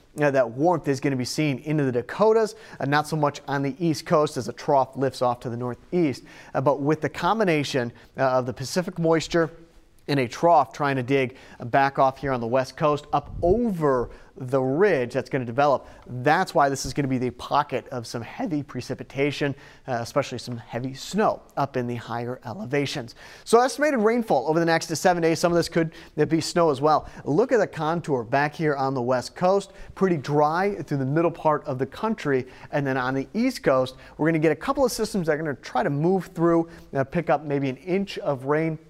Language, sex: English, male